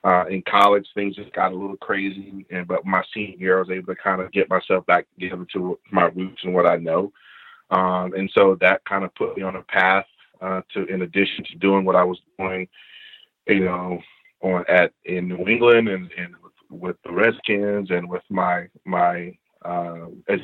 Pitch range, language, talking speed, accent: 90-100 Hz, English, 205 wpm, American